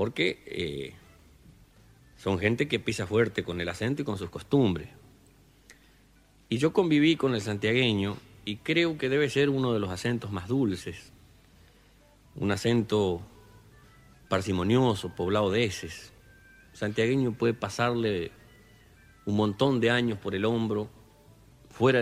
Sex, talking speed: male, 135 wpm